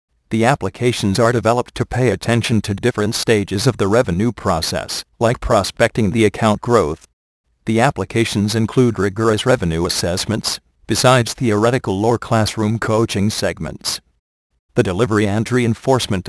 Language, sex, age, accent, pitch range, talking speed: English, male, 40-59, American, 100-120 Hz, 130 wpm